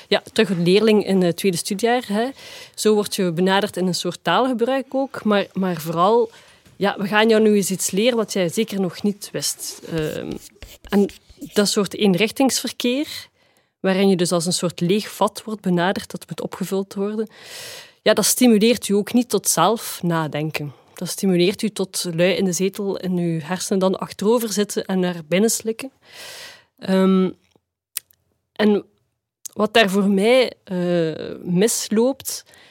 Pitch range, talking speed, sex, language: 180-220 Hz, 165 wpm, female, Dutch